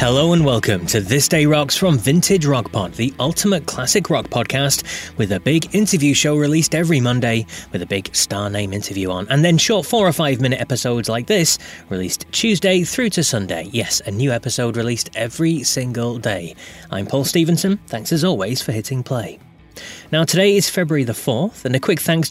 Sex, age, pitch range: male, 20-39, 115-165 Hz